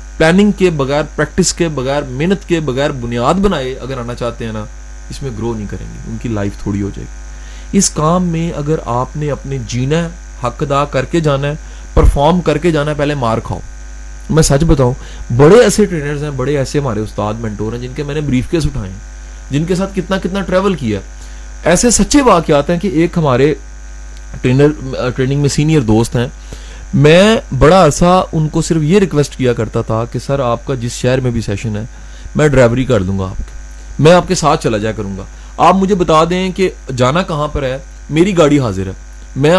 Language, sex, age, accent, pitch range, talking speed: English, male, 30-49, Indian, 110-165 Hz, 175 wpm